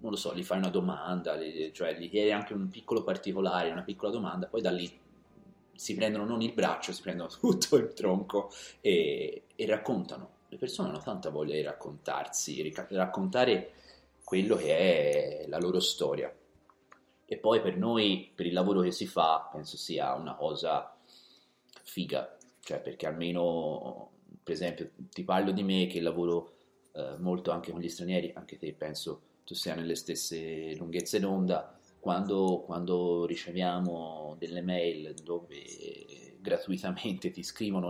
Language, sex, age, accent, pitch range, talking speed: Italian, male, 30-49, native, 85-100 Hz, 155 wpm